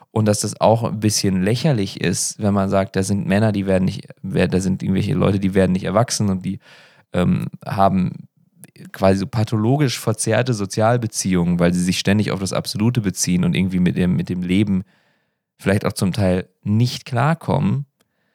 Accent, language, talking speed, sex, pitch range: German, English, 180 wpm, male, 95-135 Hz